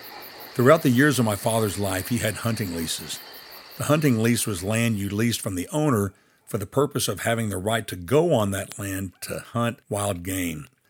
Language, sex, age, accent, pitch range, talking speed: English, male, 60-79, American, 100-120 Hz, 205 wpm